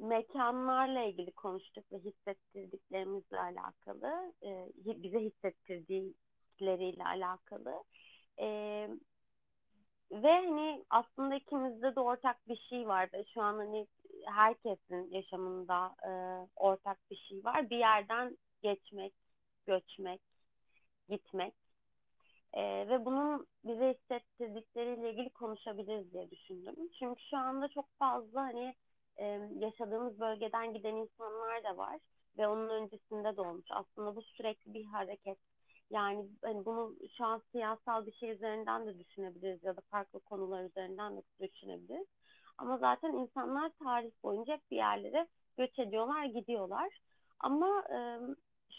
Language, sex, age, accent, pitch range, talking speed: Turkish, female, 30-49, native, 195-260 Hz, 115 wpm